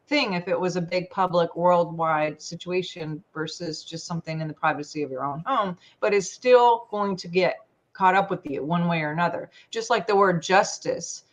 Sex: female